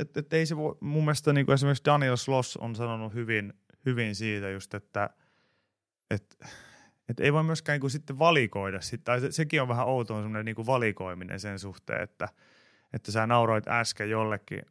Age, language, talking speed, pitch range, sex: 30-49, Finnish, 180 wpm, 100-125 Hz, male